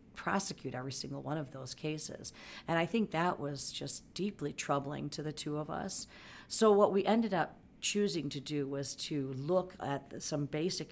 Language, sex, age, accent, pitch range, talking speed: English, female, 50-69, American, 140-165 Hz, 185 wpm